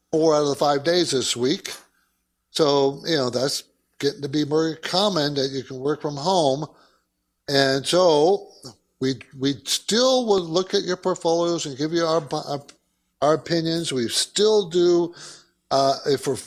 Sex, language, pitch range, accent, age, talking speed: male, English, 135-180 Hz, American, 50-69, 170 wpm